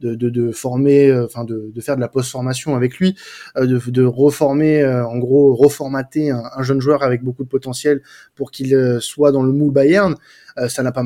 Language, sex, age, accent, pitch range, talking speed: French, male, 20-39, French, 130-170 Hz, 235 wpm